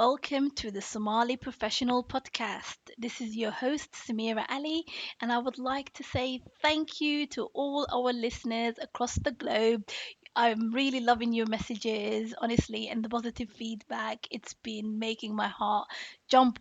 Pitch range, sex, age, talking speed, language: 230-265 Hz, female, 20-39, 155 wpm, English